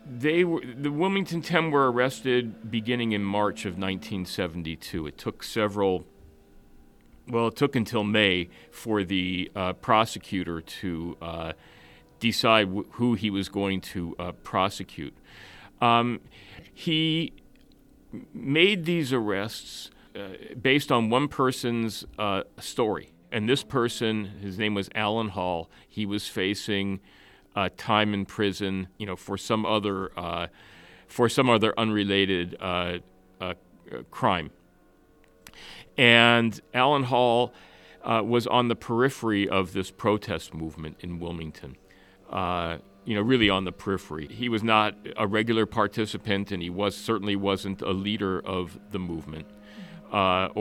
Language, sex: English, male